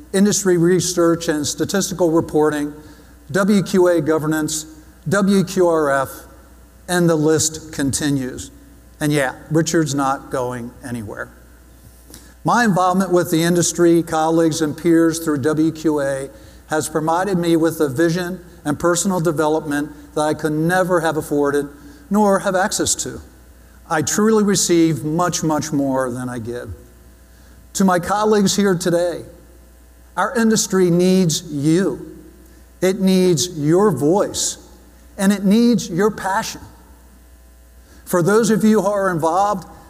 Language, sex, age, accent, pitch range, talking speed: English, male, 60-79, American, 145-185 Hz, 120 wpm